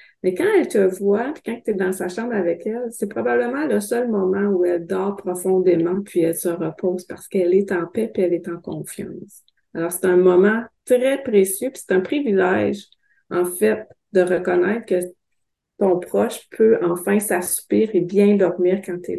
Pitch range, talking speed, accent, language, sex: 180-210 Hz, 195 wpm, Canadian, English, female